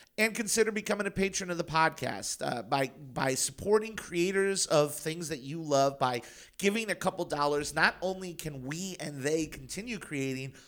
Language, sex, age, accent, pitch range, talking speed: English, male, 30-49, American, 135-185 Hz, 175 wpm